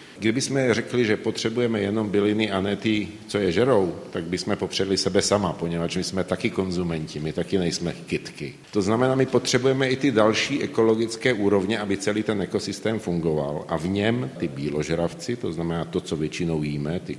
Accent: native